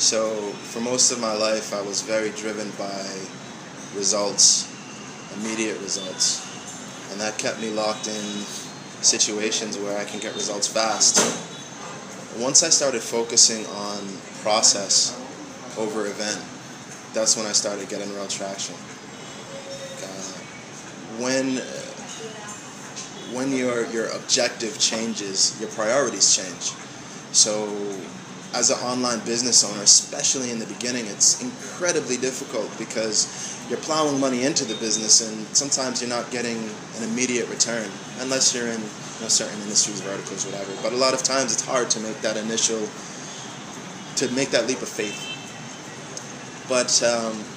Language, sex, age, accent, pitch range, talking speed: English, male, 20-39, American, 110-125 Hz, 140 wpm